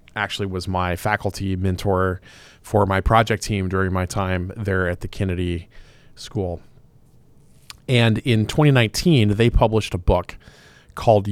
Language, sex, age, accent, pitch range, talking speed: English, male, 30-49, American, 95-120 Hz, 135 wpm